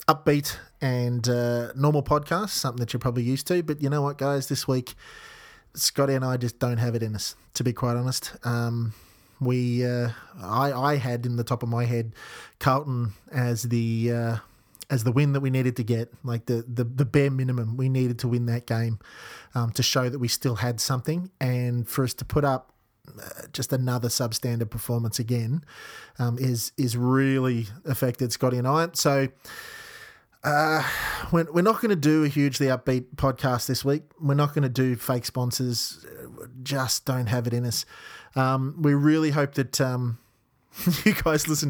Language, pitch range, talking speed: English, 120-140 Hz, 185 wpm